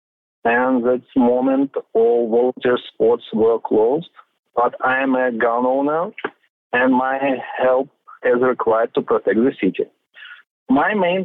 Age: 40-59